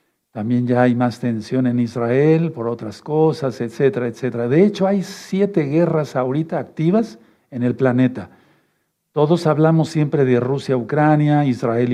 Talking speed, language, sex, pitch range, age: 145 wpm, Spanish, male, 125-150 Hz, 50-69